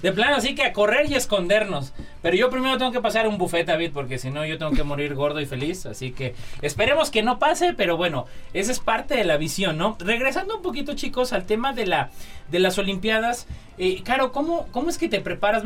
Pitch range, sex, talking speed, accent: 135-215 Hz, male, 225 wpm, Mexican